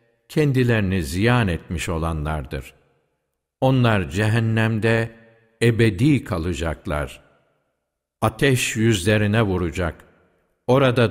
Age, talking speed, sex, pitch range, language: 60-79, 65 wpm, male, 90-125 Hz, Turkish